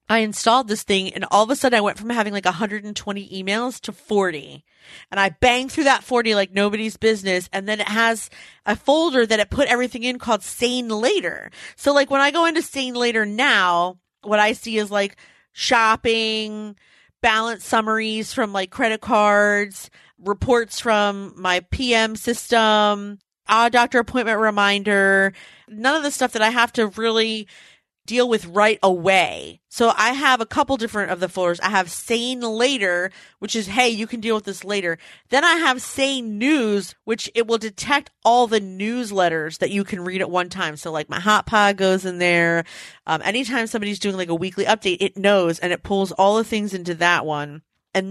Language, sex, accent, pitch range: English, female, American, 195-235 Hz